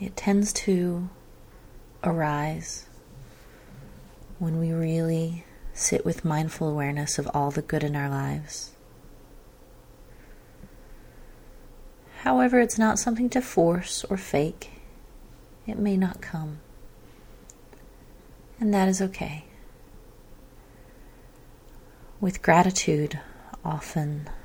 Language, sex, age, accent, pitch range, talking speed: English, female, 30-49, American, 150-180 Hz, 90 wpm